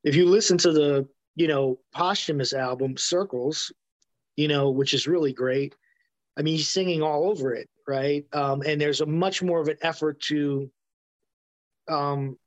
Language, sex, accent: English, male, American